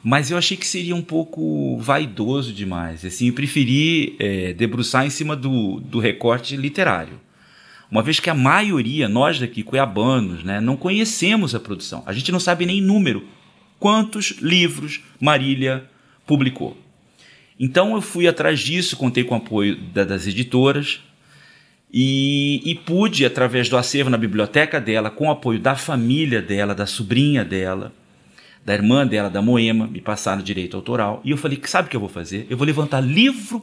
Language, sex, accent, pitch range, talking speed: Portuguese, male, Brazilian, 115-175 Hz, 175 wpm